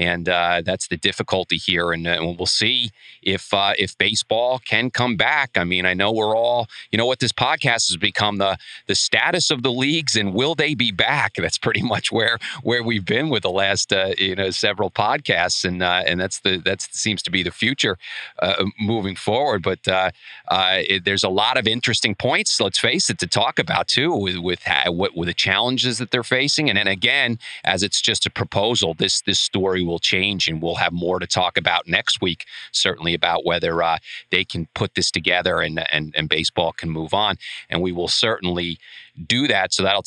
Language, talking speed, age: English, 215 wpm, 40-59